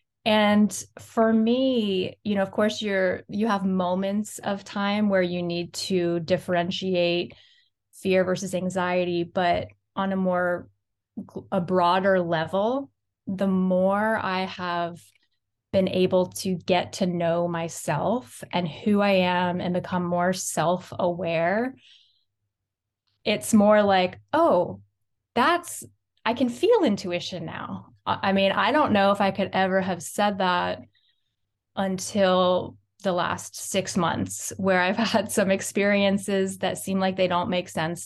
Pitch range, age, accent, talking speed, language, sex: 175-205 Hz, 20-39, American, 135 wpm, English, female